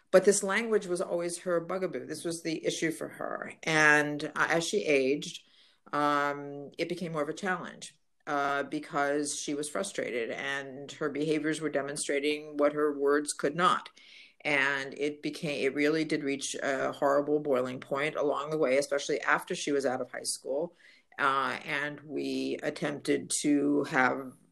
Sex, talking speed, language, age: female, 165 wpm, English, 50-69